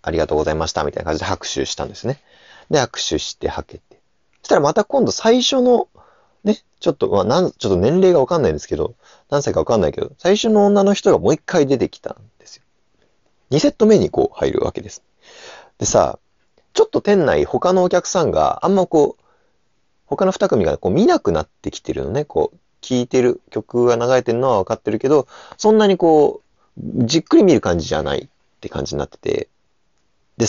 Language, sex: Japanese, male